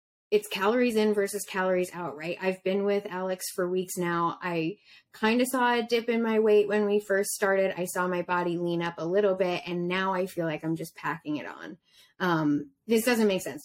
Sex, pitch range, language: female, 170-210 Hz, English